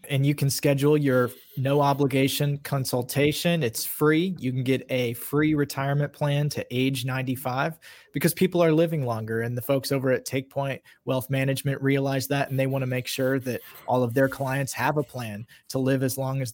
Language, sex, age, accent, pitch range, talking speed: English, male, 30-49, American, 125-145 Hz, 190 wpm